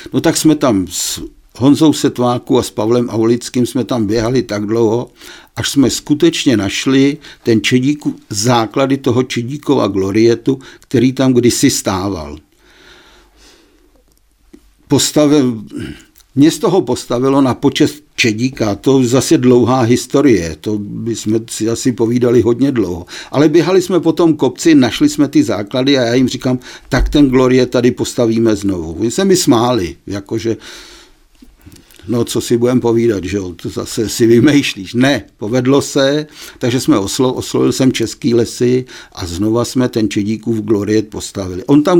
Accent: native